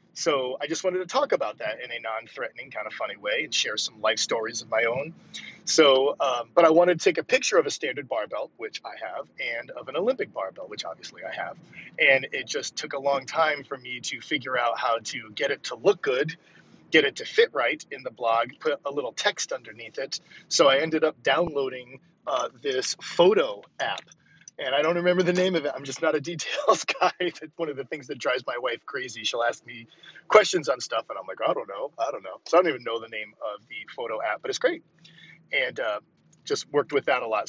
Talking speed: 240 wpm